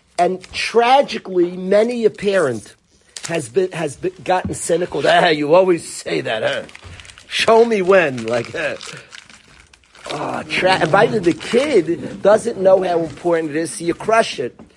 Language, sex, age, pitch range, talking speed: English, male, 40-59, 155-215 Hz, 160 wpm